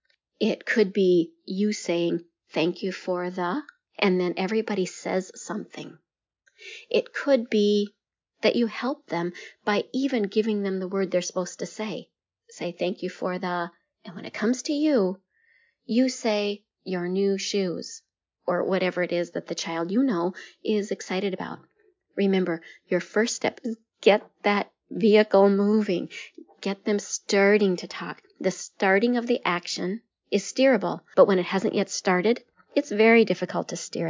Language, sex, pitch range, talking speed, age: English, female, 180-215 Hz, 160 wpm, 40-59